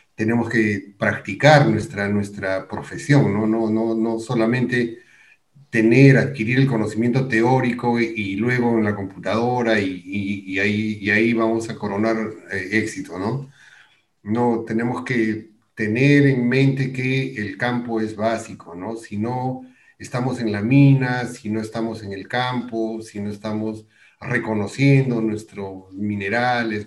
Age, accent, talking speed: 40-59, Mexican, 130 wpm